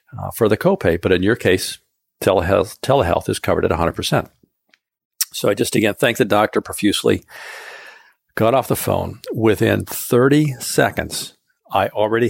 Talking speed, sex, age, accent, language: 150 wpm, male, 50-69, American, English